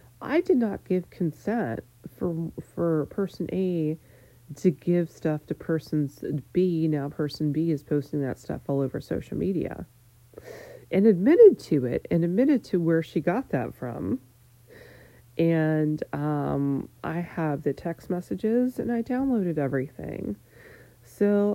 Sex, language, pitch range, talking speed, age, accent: female, English, 140-210 Hz, 140 wpm, 40-59, American